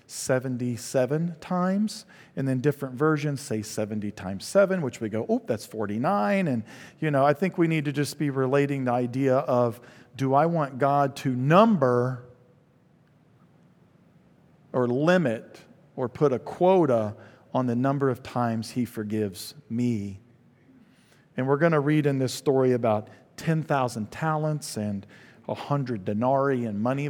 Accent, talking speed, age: American, 150 wpm, 50-69